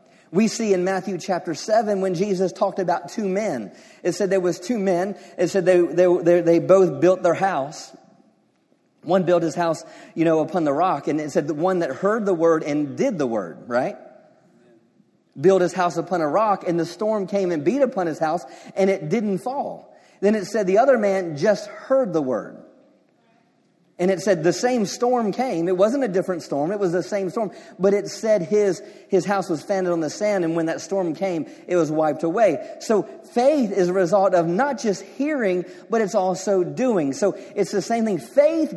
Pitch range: 175-220 Hz